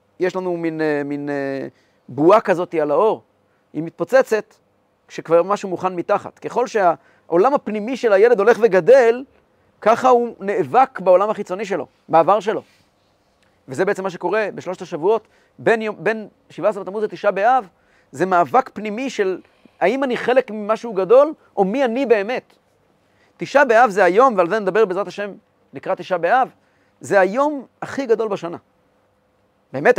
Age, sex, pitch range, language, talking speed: 40-59, male, 175-250 Hz, Hebrew, 145 wpm